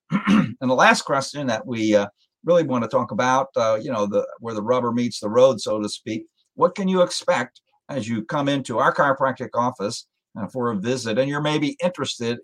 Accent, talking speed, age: American, 205 wpm, 50-69